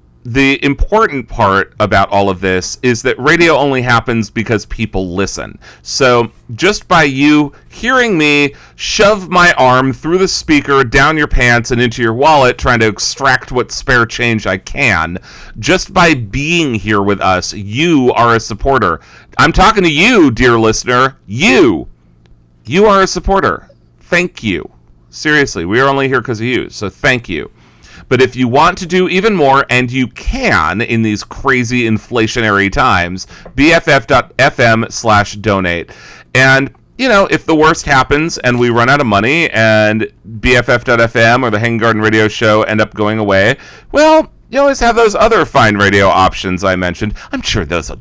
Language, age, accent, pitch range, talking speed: English, 40-59, American, 105-145 Hz, 170 wpm